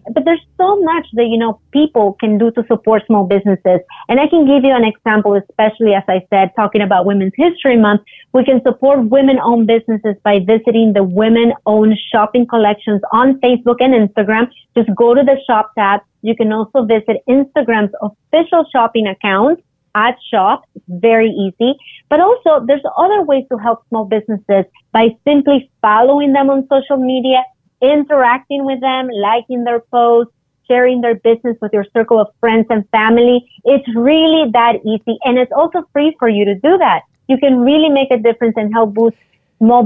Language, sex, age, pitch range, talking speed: English, female, 30-49, 210-265 Hz, 180 wpm